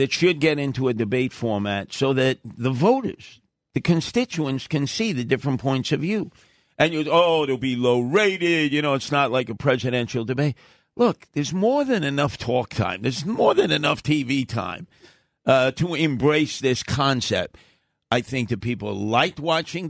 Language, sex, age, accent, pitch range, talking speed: English, male, 50-69, American, 125-155 Hz, 180 wpm